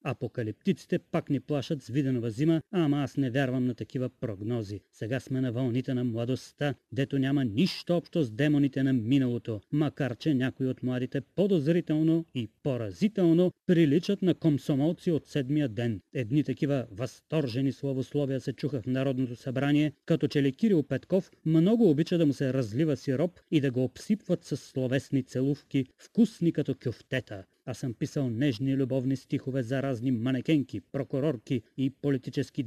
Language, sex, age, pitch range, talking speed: Bulgarian, male, 30-49, 130-155 Hz, 155 wpm